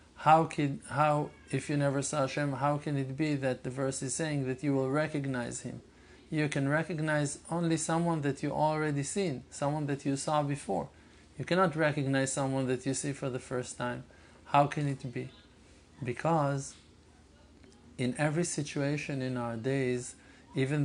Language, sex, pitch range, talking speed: English, male, 125-150 Hz, 170 wpm